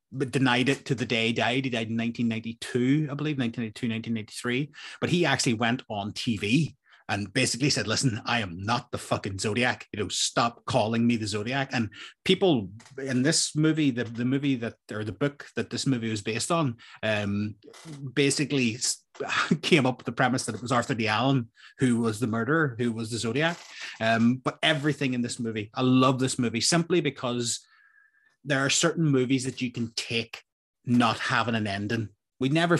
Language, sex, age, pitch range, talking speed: English, male, 30-49, 115-135 Hz, 190 wpm